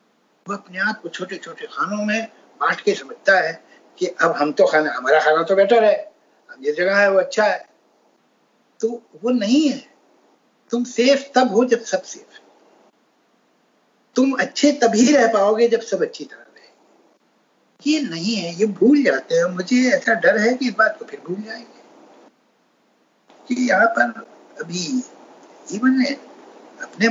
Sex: male